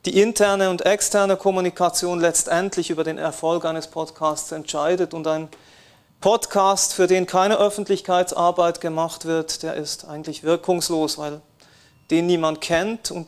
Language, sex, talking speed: German, male, 135 wpm